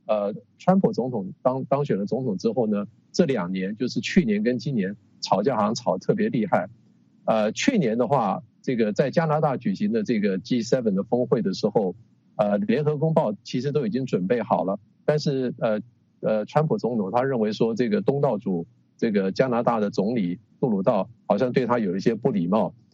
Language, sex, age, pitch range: English, male, 50-69, 120-200 Hz